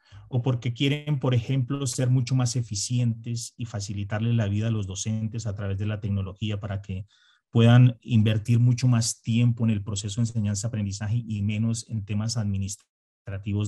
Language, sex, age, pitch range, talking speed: Spanish, male, 30-49, 105-125 Hz, 165 wpm